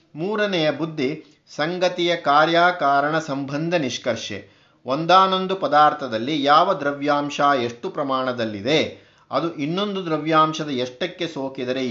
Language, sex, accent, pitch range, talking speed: Kannada, male, native, 135-175 Hz, 85 wpm